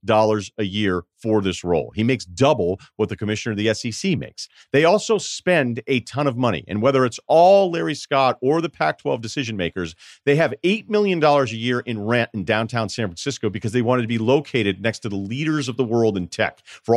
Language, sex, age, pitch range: English, male, 40-59, 110-140 Hz